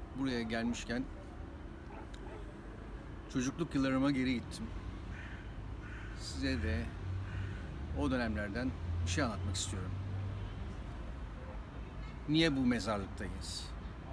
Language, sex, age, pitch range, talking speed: Turkish, male, 60-79, 75-120 Hz, 70 wpm